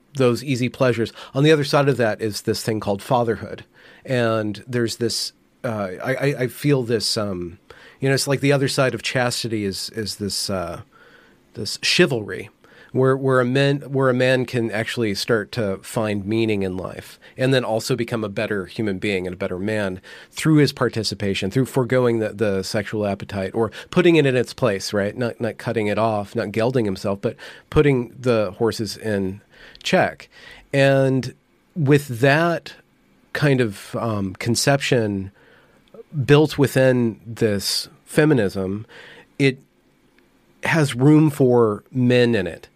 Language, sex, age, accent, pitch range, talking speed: English, male, 40-59, American, 105-130 Hz, 160 wpm